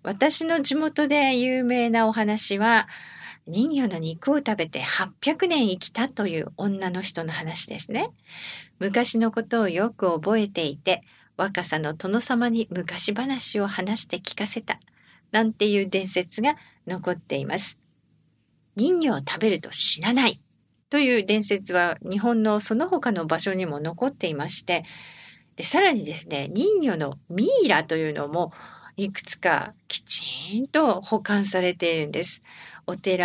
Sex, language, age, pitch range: female, English, 50-69, 175-245 Hz